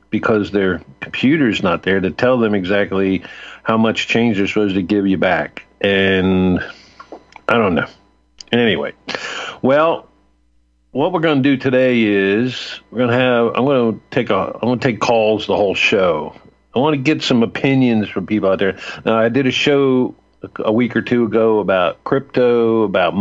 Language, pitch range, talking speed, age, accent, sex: English, 105-120 Hz, 185 wpm, 50-69, American, male